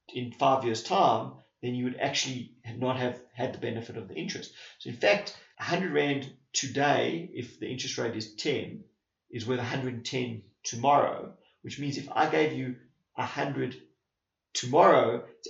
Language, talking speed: English, 165 wpm